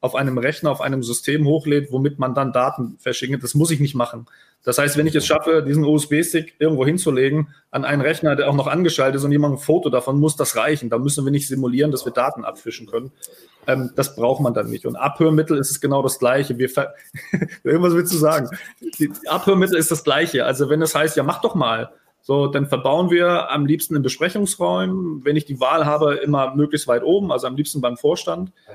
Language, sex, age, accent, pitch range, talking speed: German, male, 30-49, German, 130-160 Hz, 225 wpm